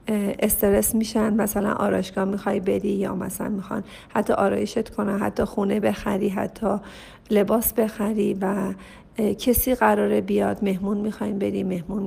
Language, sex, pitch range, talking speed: Persian, female, 200-230 Hz, 130 wpm